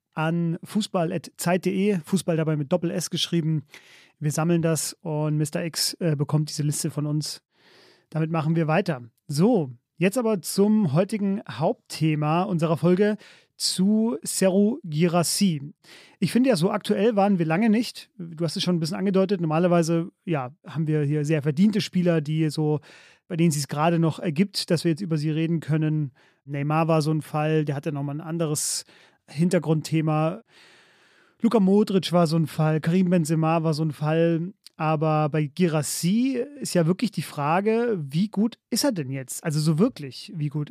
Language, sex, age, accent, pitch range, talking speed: German, male, 30-49, German, 155-185 Hz, 170 wpm